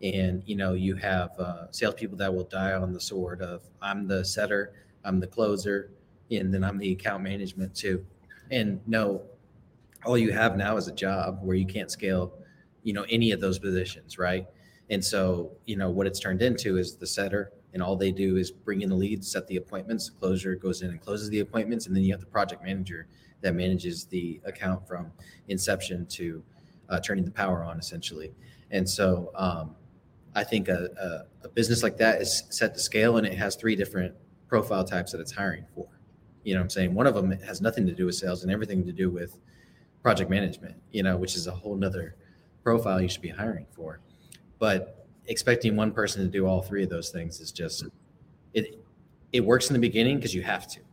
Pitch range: 90-100 Hz